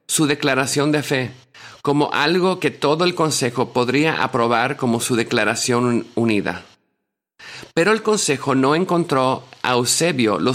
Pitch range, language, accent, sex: 115-150 Hz, English, Mexican, male